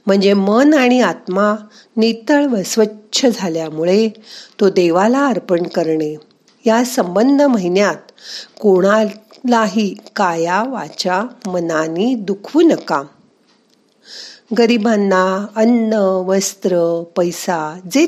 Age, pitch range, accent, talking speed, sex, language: 50-69, 170-235 Hz, native, 75 wpm, female, Marathi